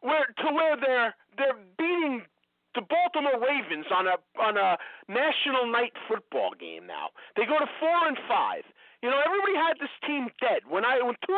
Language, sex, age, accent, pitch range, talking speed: English, male, 40-59, American, 240-315 Hz, 160 wpm